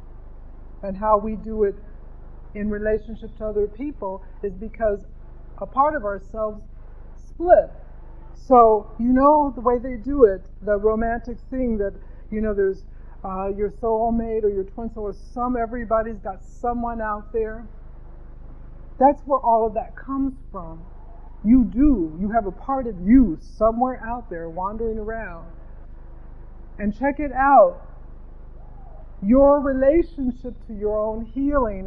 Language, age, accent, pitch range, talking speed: English, 50-69, American, 175-240 Hz, 145 wpm